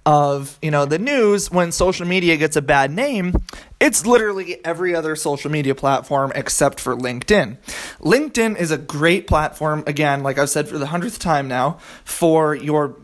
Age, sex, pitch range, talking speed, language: 20-39, male, 140-175 Hz, 175 wpm, English